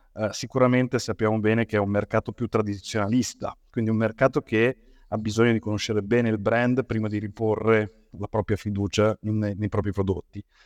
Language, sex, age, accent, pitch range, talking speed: Italian, male, 30-49, native, 105-135 Hz, 170 wpm